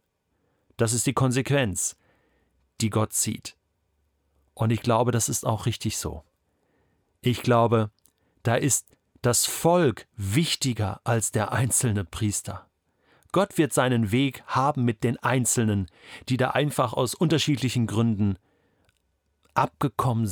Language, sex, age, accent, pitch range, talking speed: German, male, 40-59, German, 95-125 Hz, 120 wpm